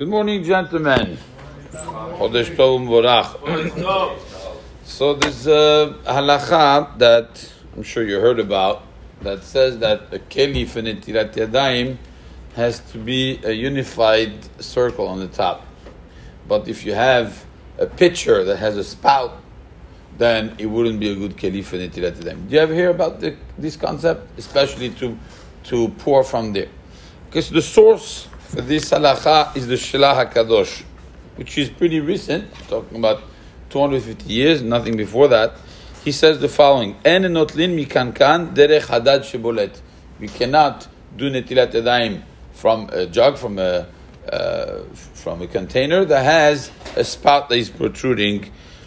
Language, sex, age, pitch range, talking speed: English, male, 50-69, 115-155 Hz, 135 wpm